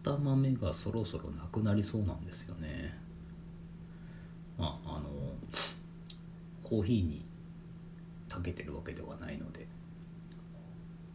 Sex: male